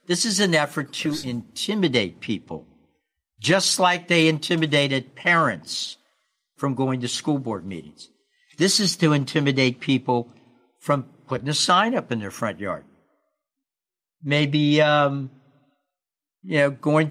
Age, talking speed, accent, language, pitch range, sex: 60-79, 130 wpm, American, English, 140-195 Hz, male